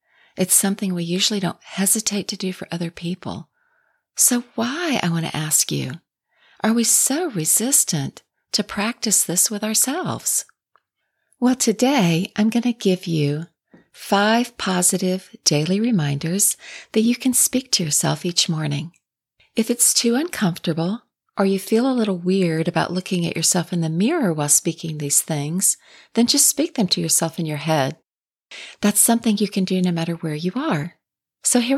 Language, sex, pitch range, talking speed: English, female, 165-220 Hz, 165 wpm